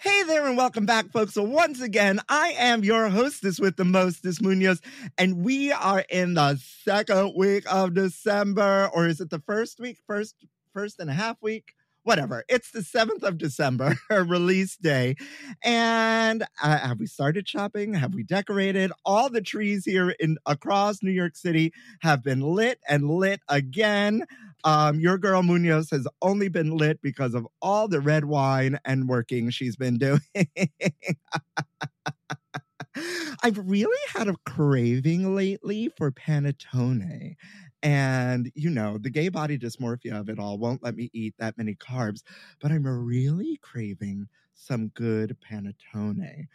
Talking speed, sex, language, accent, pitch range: 155 wpm, male, English, American, 140-200 Hz